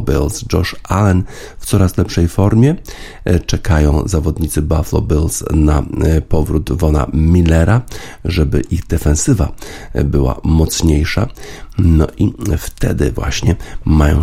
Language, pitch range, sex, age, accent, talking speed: Polish, 75-100 Hz, male, 50-69, native, 105 wpm